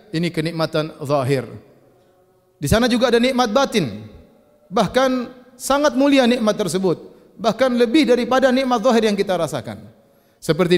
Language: Indonesian